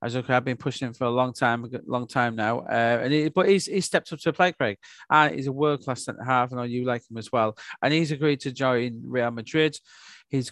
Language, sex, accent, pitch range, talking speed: English, male, British, 120-150 Hz, 255 wpm